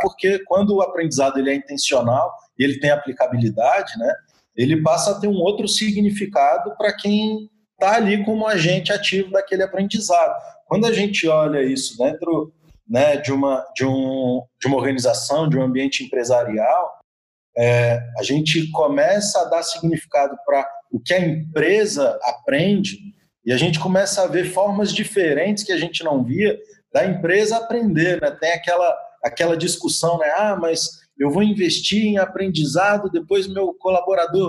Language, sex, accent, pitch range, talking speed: Portuguese, male, Brazilian, 155-205 Hz, 155 wpm